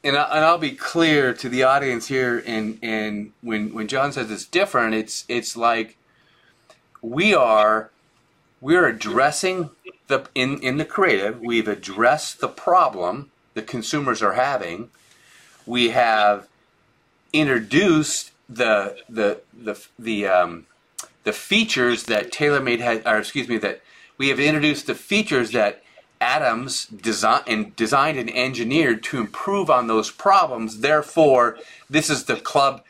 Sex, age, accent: male, 30-49, American